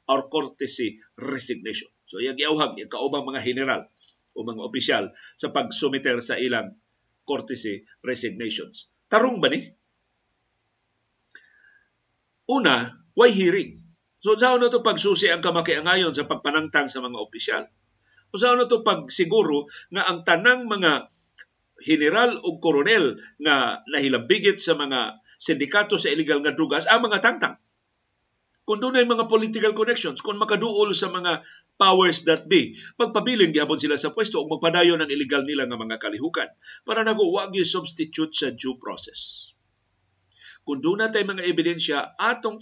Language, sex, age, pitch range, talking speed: Filipino, male, 50-69, 150-220 Hz, 140 wpm